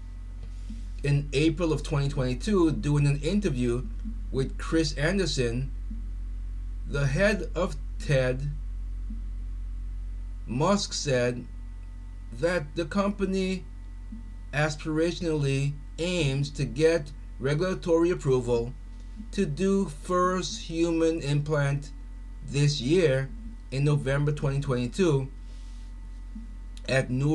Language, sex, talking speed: English, male, 75 wpm